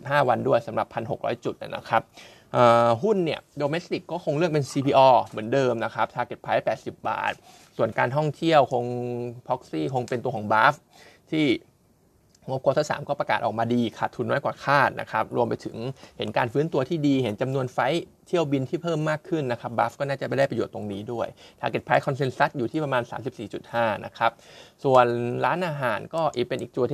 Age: 20-39